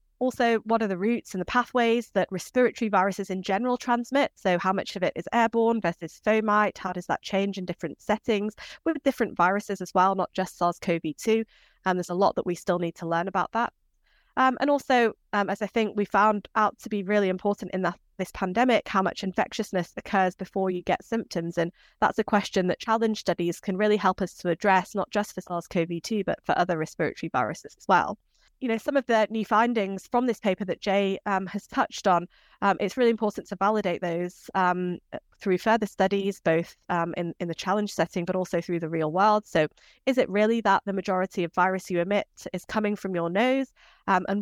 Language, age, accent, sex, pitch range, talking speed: English, 20-39, British, female, 180-220 Hz, 210 wpm